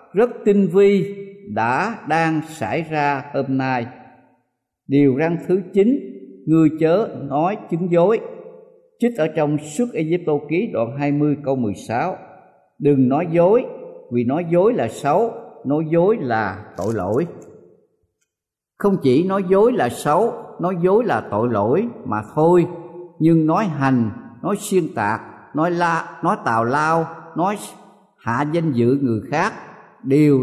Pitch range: 130-180 Hz